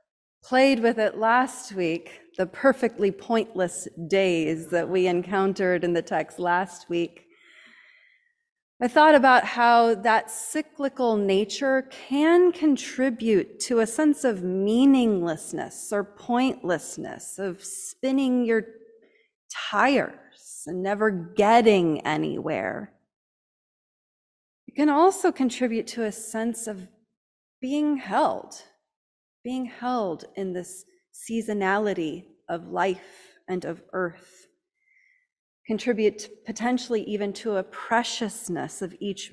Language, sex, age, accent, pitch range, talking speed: English, female, 30-49, American, 190-260 Hz, 105 wpm